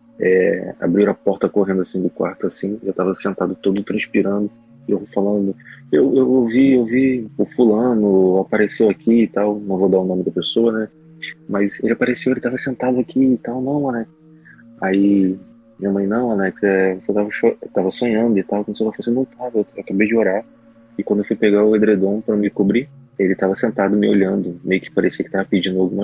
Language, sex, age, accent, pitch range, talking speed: Portuguese, male, 20-39, Brazilian, 90-115 Hz, 210 wpm